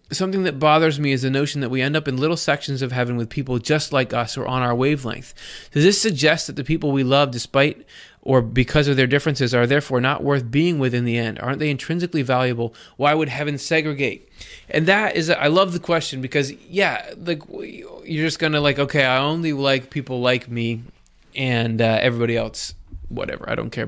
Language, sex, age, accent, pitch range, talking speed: English, male, 20-39, American, 125-150 Hz, 220 wpm